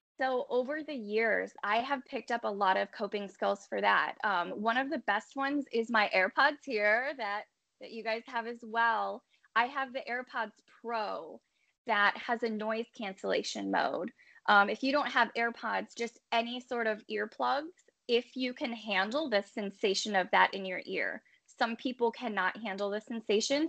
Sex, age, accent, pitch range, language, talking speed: female, 10-29, American, 210-250 Hz, English, 180 wpm